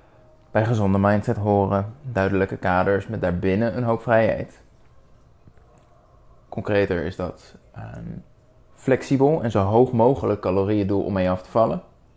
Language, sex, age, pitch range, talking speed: Dutch, male, 20-39, 95-115 Hz, 135 wpm